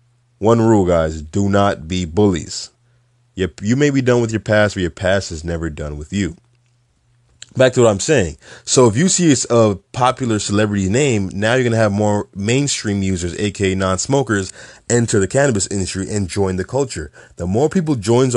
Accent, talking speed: American, 190 wpm